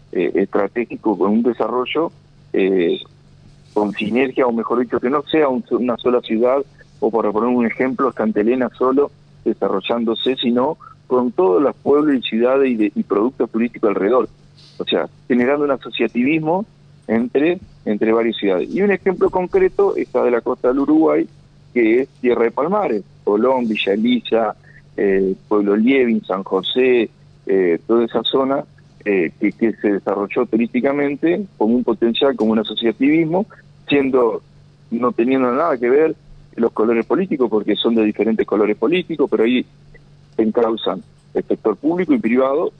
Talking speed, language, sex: 155 wpm, Spanish, male